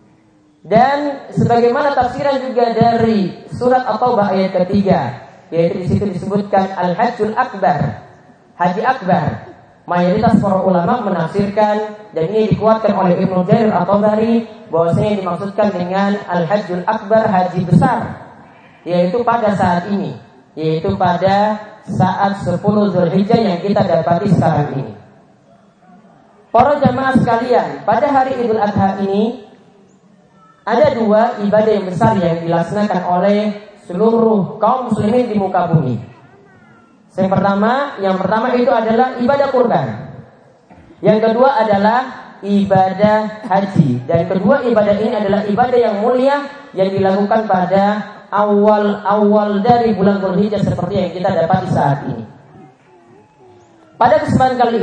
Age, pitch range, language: 30-49, 185-225 Hz, Indonesian